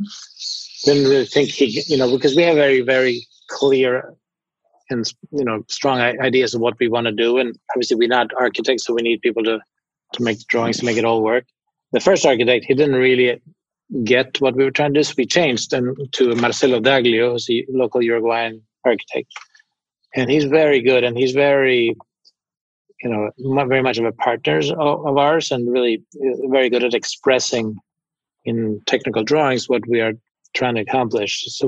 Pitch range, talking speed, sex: 120-140 Hz, 190 wpm, male